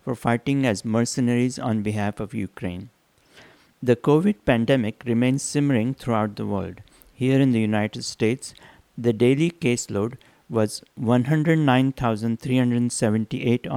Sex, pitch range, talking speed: male, 110-135 Hz, 115 wpm